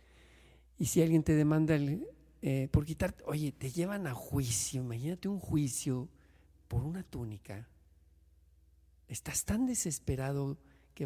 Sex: male